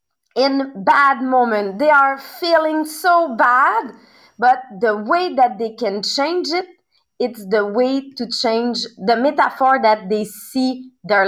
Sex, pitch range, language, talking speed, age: female, 225-300 Hz, English, 145 wpm, 30-49